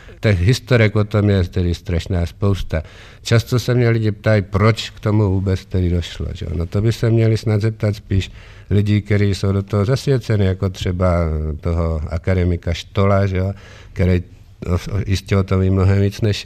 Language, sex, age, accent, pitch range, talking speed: Czech, male, 50-69, native, 95-115 Hz, 180 wpm